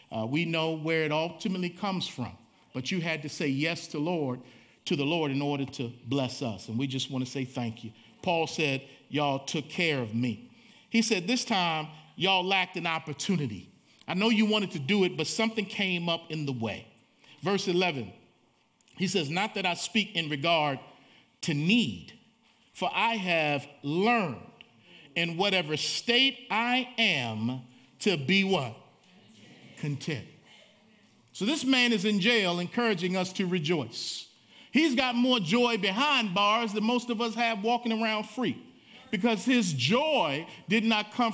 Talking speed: 165 wpm